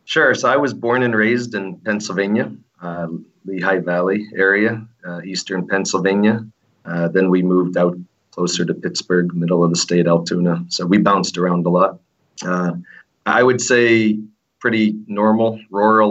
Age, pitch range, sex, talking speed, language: 40-59, 90-110 Hz, male, 155 wpm, English